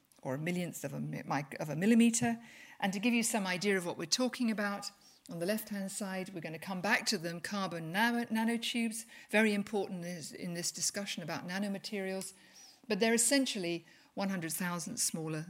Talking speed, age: 165 wpm, 50-69